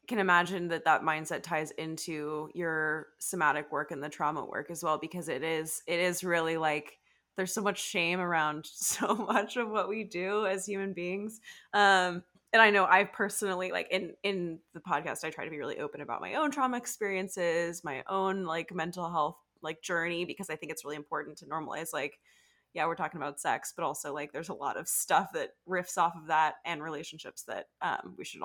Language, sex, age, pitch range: English, female, 20-39, 155-195 Hz